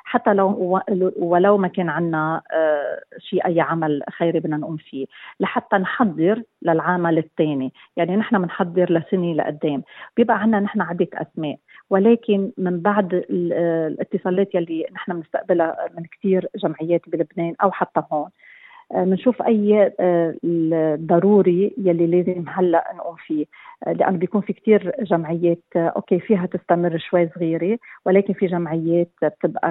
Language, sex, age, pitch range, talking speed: Arabic, female, 40-59, 165-195 Hz, 125 wpm